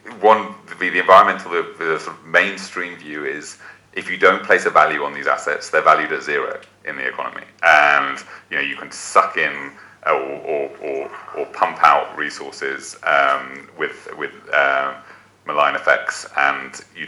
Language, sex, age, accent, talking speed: English, male, 30-49, British, 180 wpm